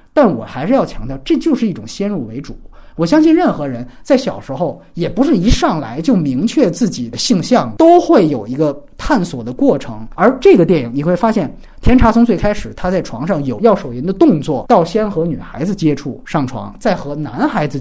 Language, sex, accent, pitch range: Chinese, male, native, 135-225 Hz